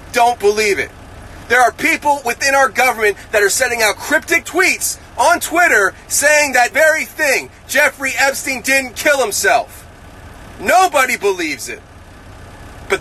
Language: English